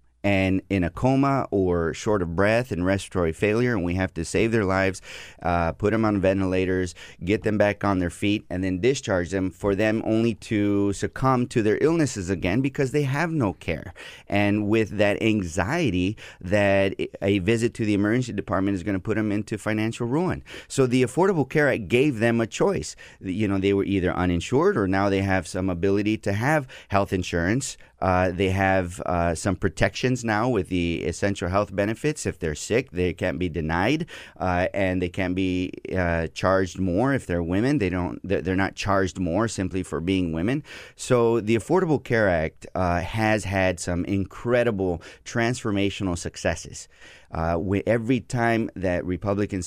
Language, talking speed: English, 180 wpm